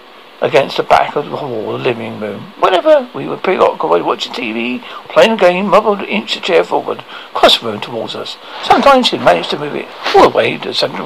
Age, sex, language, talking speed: 60-79, male, English, 220 wpm